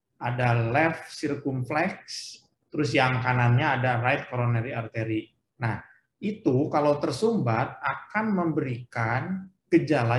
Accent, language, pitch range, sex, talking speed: native, Indonesian, 120-160 Hz, male, 100 wpm